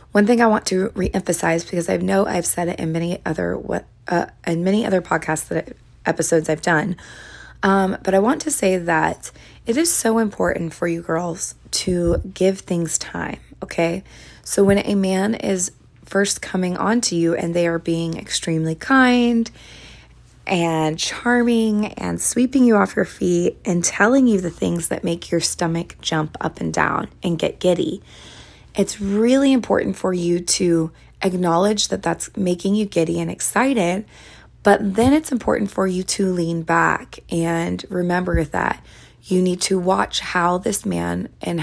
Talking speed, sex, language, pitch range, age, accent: 170 wpm, female, English, 170-205 Hz, 20-39, American